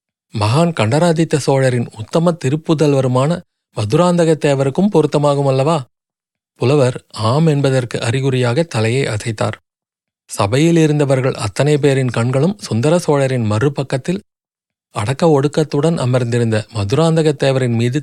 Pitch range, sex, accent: 120-155 Hz, male, native